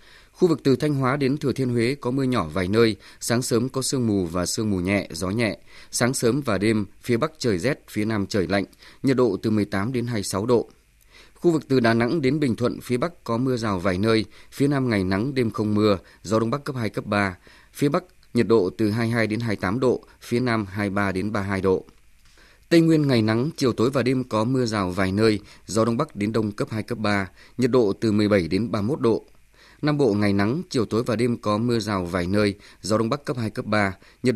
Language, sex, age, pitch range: Vietnamese, male, 20-39, 100-125 Hz